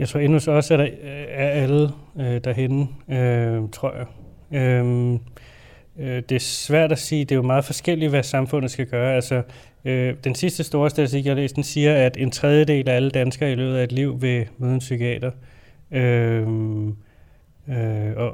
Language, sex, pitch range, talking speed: Danish, male, 120-135 Hz, 185 wpm